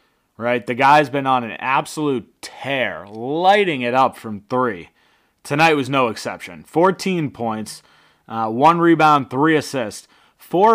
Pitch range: 120-160 Hz